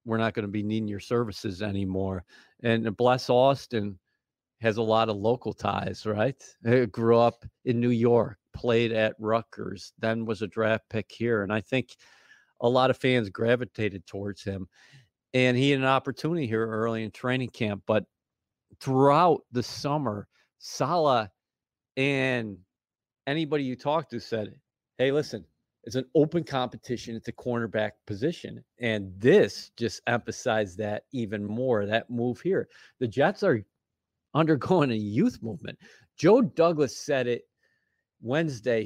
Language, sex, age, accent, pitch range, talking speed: English, male, 50-69, American, 110-130 Hz, 150 wpm